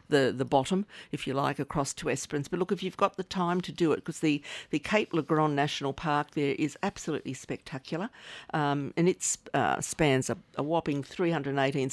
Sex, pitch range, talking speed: female, 140-180 Hz, 200 wpm